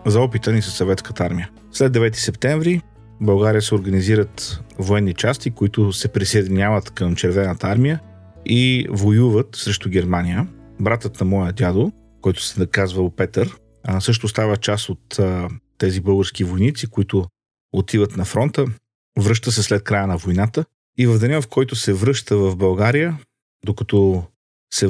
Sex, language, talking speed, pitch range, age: male, Bulgarian, 150 wpm, 95-115 Hz, 40-59